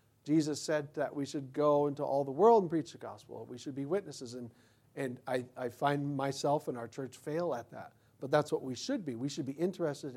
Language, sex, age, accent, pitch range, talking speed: English, male, 40-59, American, 120-175 Hz, 235 wpm